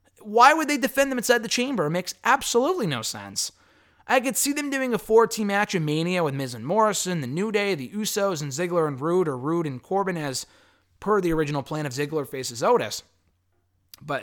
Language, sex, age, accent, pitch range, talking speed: English, male, 20-39, American, 140-205 Hz, 210 wpm